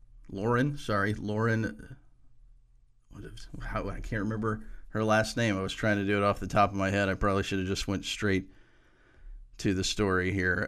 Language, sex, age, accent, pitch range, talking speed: English, male, 40-59, American, 95-110 Hz, 195 wpm